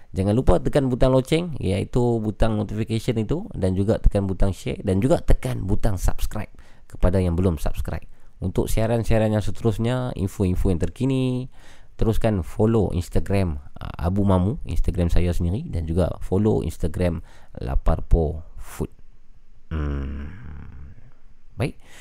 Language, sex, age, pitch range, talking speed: Malay, male, 20-39, 85-105 Hz, 125 wpm